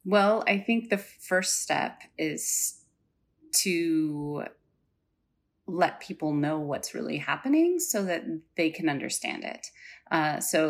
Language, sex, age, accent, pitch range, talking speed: English, female, 30-49, American, 155-190 Hz, 125 wpm